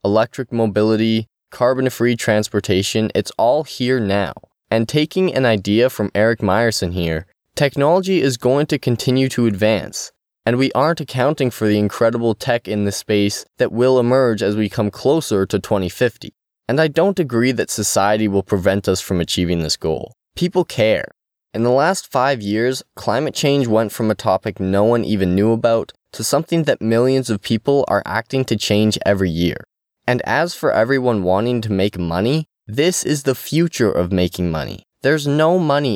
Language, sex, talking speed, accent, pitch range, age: English, male, 175 wpm, American, 100-130 Hz, 10-29